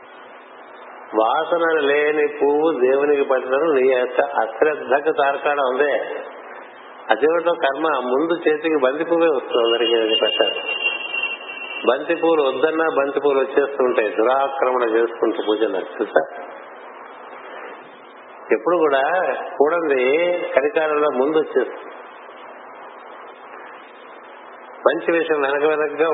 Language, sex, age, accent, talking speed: Telugu, male, 50-69, native, 85 wpm